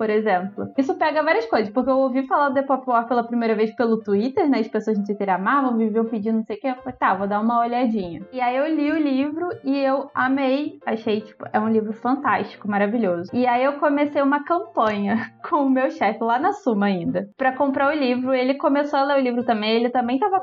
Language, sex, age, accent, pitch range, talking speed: Portuguese, female, 20-39, Brazilian, 215-280 Hz, 240 wpm